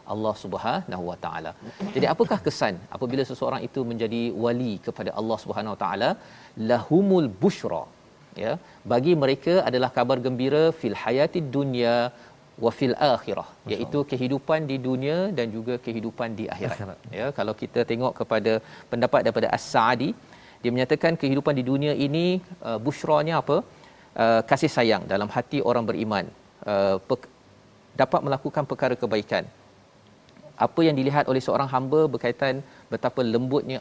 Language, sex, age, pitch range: Malayalam, male, 40-59, 120-145 Hz